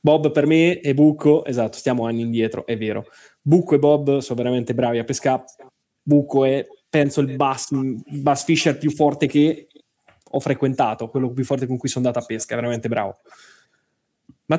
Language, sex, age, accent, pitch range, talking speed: Italian, male, 20-39, native, 120-150 Hz, 185 wpm